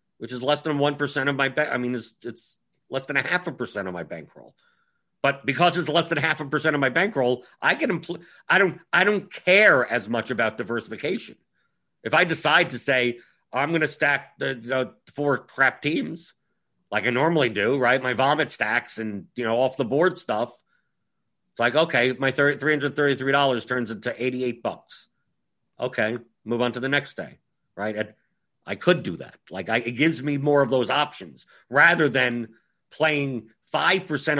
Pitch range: 120-150 Hz